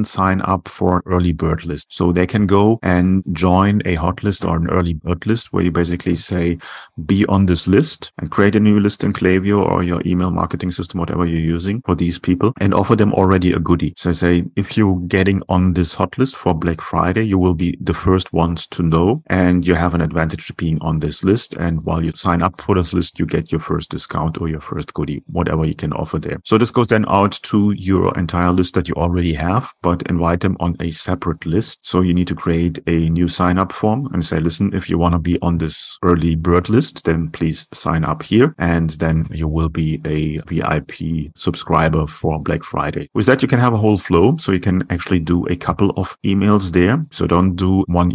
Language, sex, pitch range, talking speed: English, male, 85-95 Hz, 230 wpm